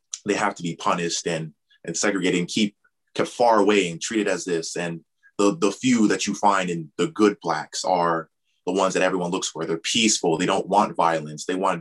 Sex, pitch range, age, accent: male, 90-105 Hz, 20-39, American